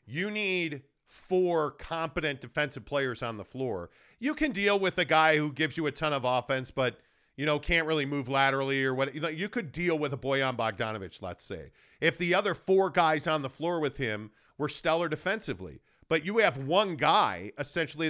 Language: English